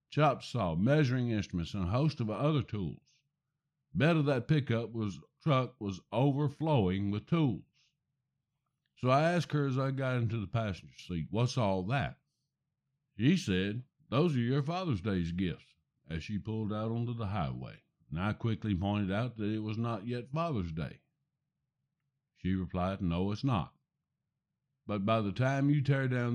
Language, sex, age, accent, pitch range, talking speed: English, male, 60-79, American, 105-145 Hz, 170 wpm